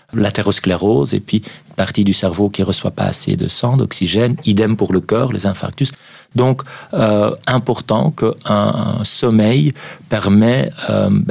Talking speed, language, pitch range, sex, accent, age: 155 wpm, French, 100-125 Hz, male, French, 40-59